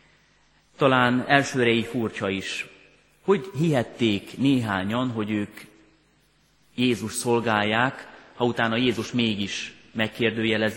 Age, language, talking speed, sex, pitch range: 30-49, Hungarian, 90 wpm, male, 100-125 Hz